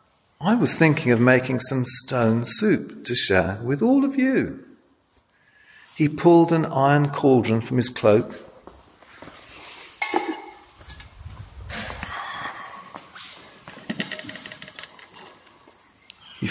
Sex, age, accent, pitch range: male, 40-59, British, 110-160 Hz